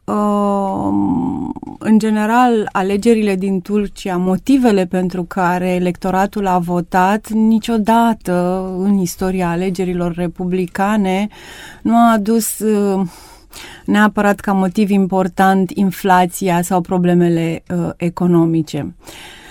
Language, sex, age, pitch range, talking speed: Romanian, female, 30-49, 180-210 Hz, 85 wpm